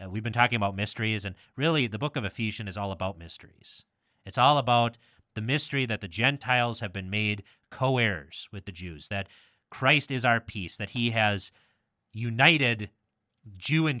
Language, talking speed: English, 175 wpm